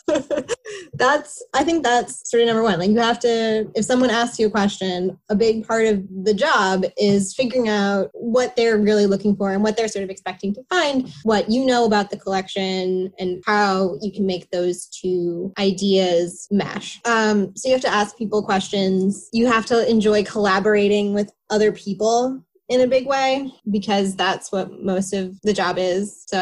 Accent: American